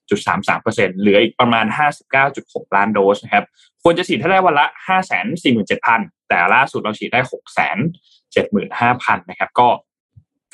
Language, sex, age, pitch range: Thai, male, 20-39, 115-170 Hz